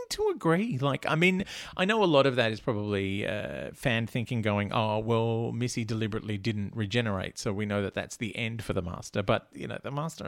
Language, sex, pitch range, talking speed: English, male, 105-140 Hz, 220 wpm